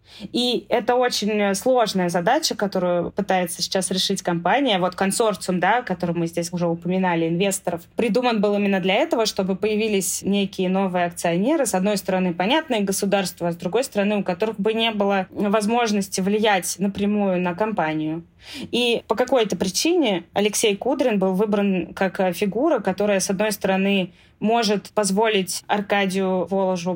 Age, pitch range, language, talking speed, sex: 20-39, 180-210 Hz, Russian, 145 wpm, female